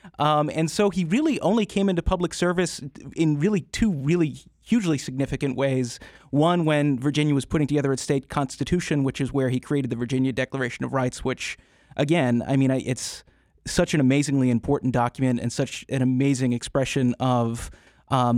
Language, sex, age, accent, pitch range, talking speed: English, male, 30-49, American, 135-160 Hz, 175 wpm